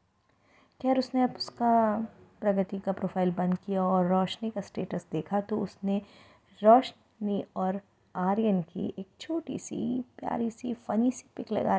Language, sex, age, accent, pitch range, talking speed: Hindi, female, 20-39, native, 170-220 Hz, 150 wpm